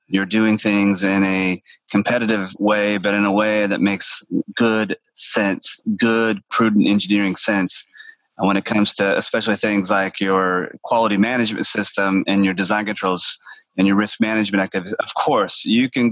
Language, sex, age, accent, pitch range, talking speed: English, male, 30-49, American, 95-105 Hz, 165 wpm